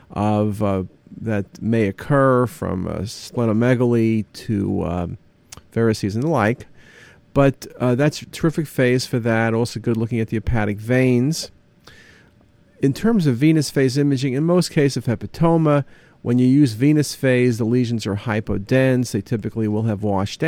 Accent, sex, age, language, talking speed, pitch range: American, male, 50-69, English, 160 wpm, 115-140 Hz